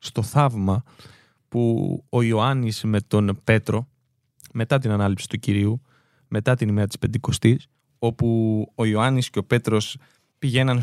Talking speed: 140 wpm